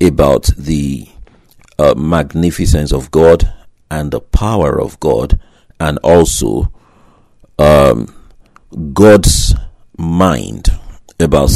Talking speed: 90 wpm